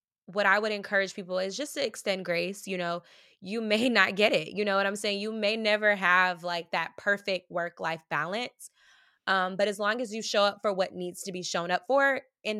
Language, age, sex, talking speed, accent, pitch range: English, 20-39, female, 230 wpm, American, 175-215 Hz